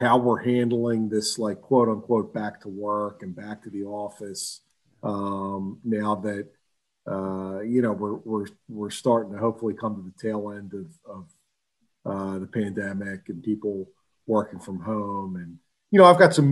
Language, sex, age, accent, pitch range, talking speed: English, male, 40-59, American, 105-125 Hz, 170 wpm